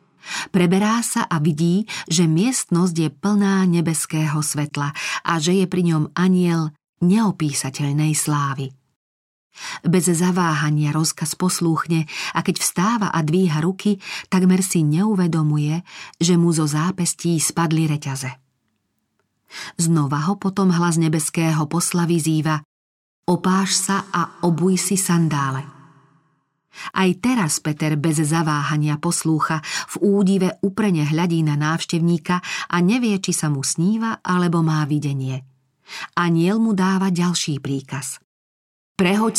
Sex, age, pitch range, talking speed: female, 40-59, 155-185 Hz, 115 wpm